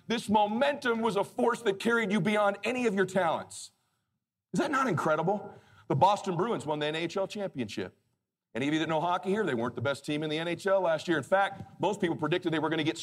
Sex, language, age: male, English, 40-59